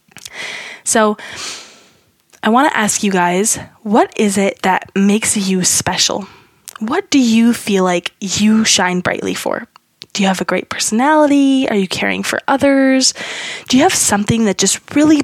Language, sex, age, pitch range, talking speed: English, female, 20-39, 190-240 Hz, 160 wpm